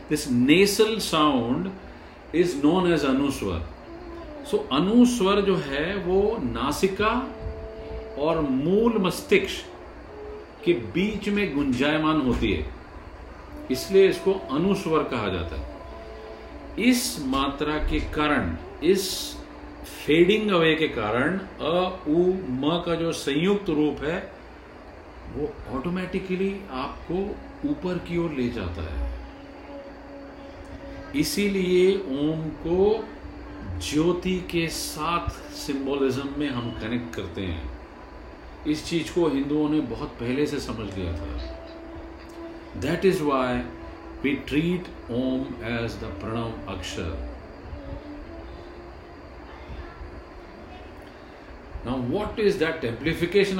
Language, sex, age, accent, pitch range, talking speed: Hindi, male, 50-69, native, 115-185 Hz, 100 wpm